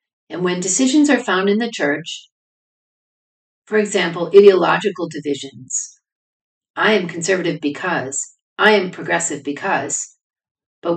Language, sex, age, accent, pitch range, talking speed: English, female, 50-69, American, 155-205 Hz, 115 wpm